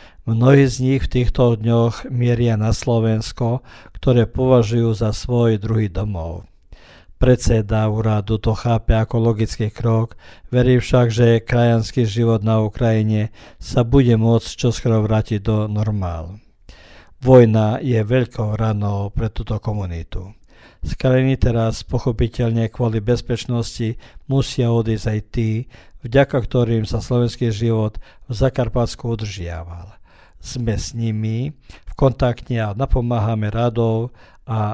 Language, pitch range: Croatian, 110-120 Hz